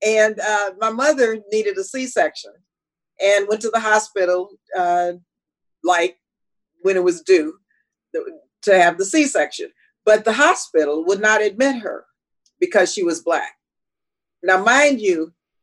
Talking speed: 140 wpm